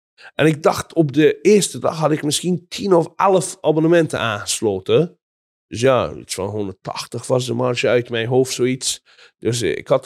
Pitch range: 125-165 Hz